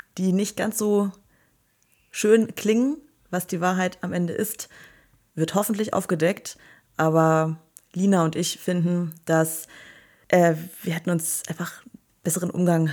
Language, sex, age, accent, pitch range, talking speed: German, female, 20-39, German, 165-190 Hz, 130 wpm